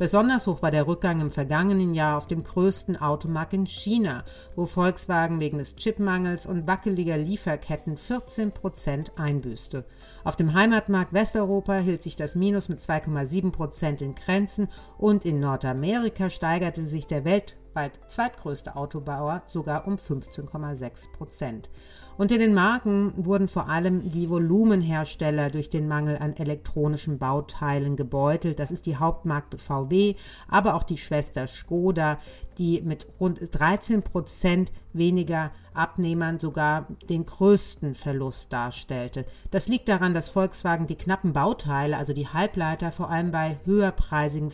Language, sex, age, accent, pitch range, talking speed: German, female, 50-69, German, 150-190 Hz, 135 wpm